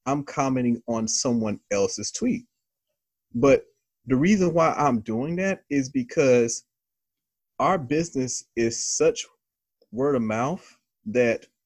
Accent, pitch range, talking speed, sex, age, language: American, 110-140 Hz, 120 wpm, male, 30-49, English